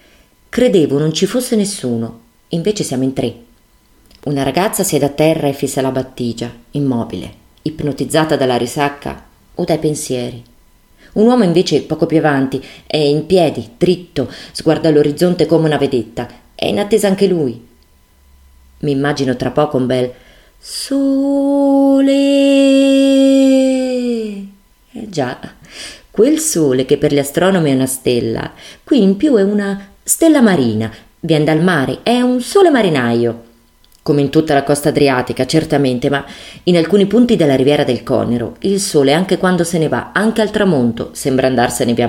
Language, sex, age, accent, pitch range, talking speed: Italian, female, 30-49, native, 125-185 Hz, 150 wpm